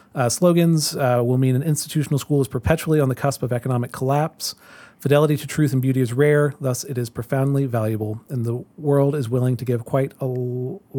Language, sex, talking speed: English, male, 210 wpm